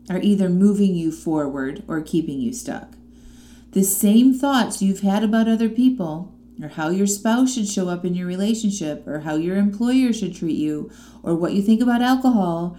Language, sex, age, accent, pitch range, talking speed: English, female, 30-49, American, 180-235 Hz, 190 wpm